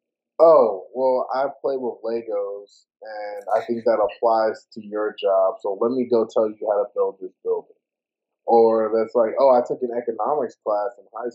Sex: male